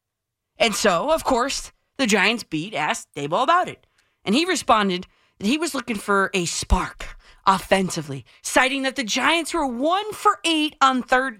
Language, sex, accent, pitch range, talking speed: English, female, American, 195-300 Hz, 160 wpm